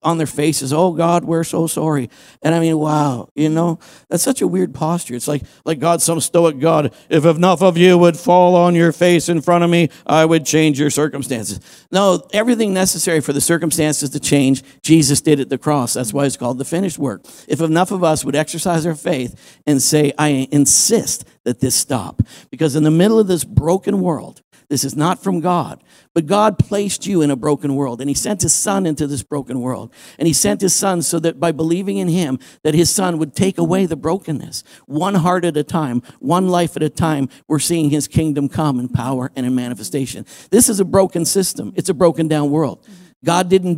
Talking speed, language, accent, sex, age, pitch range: 220 wpm, English, American, male, 50-69, 145-175 Hz